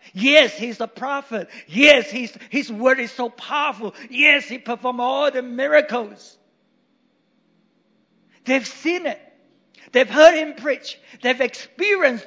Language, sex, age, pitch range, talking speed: English, male, 50-69, 220-290 Hz, 120 wpm